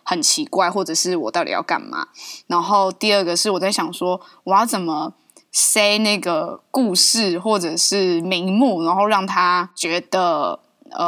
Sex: female